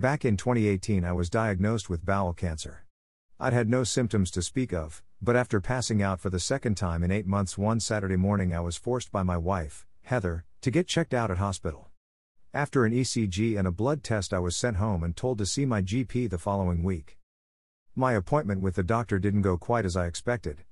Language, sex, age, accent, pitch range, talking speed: English, male, 50-69, American, 90-115 Hz, 215 wpm